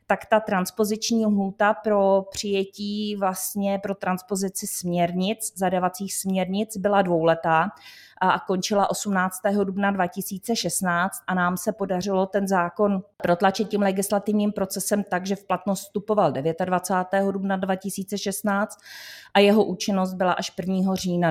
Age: 30-49